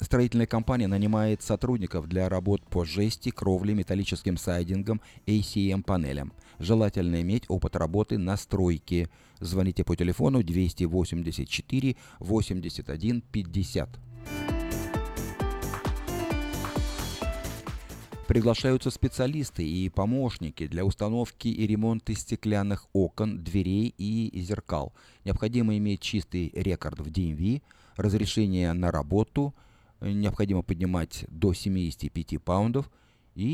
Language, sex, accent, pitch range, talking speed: Russian, male, native, 90-115 Hz, 90 wpm